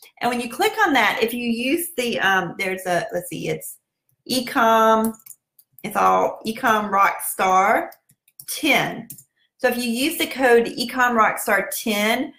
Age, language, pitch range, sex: 40-59, English, 190-235 Hz, female